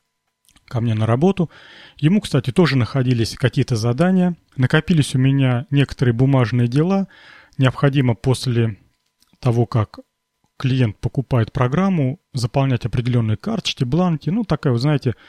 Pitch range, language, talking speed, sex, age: 120-150 Hz, Russian, 120 wpm, male, 30-49